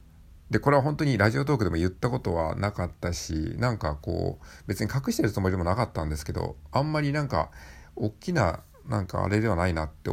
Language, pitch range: Japanese, 80-115 Hz